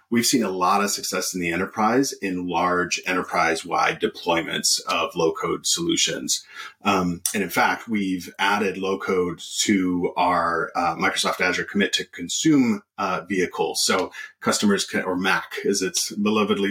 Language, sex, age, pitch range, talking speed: English, male, 30-49, 90-100 Hz, 145 wpm